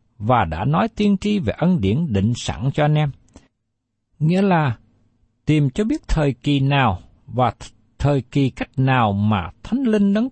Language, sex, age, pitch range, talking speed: Vietnamese, male, 60-79, 110-175 Hz, 180 wpm